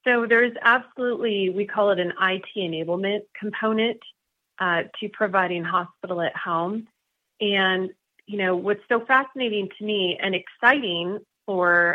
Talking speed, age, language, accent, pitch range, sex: 135 wpm, 30-49, English, American, 175-210 Hz, female